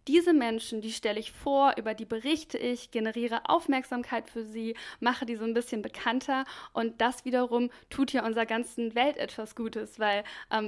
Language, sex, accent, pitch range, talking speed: German, female, German, 220-245 Hz, 180 wpm